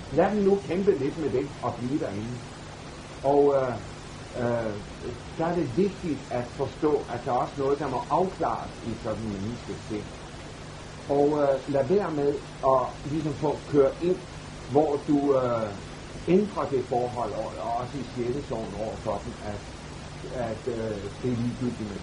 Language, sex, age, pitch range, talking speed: Danish, male, 60-79, 110-150 Hz, 170 wpm